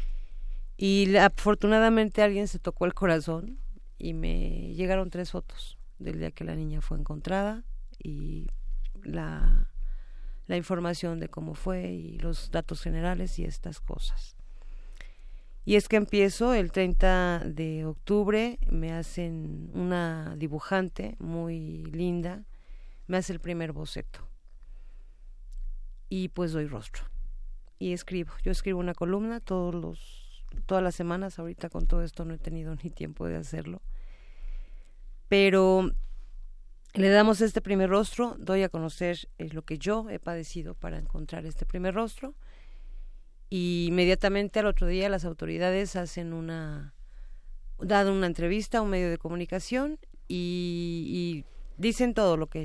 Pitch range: 155-190 Hz